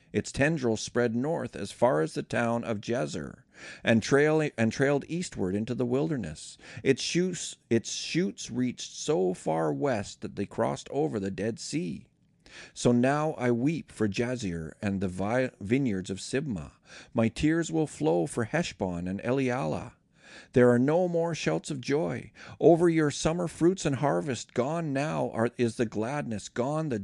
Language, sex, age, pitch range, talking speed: English, male, 50-69, 110-150 Hz, 155 wpm